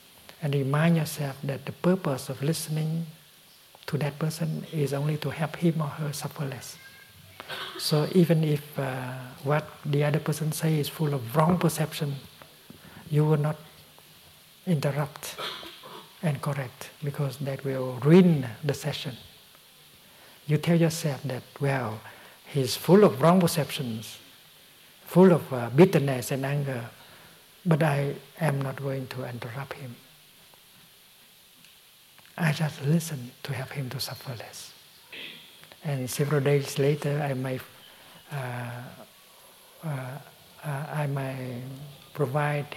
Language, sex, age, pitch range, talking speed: English, male, 60-79, 135-160 Hz, 125 wpm